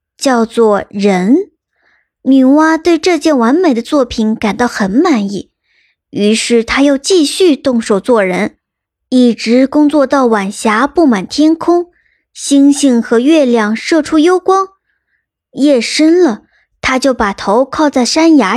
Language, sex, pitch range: Chinese, male, 230-310 Hz